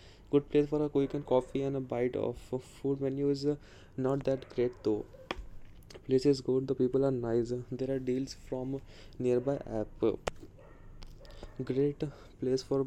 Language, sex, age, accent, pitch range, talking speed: English, male, 20-39, Indian, 120-135 Hz, 160 wpm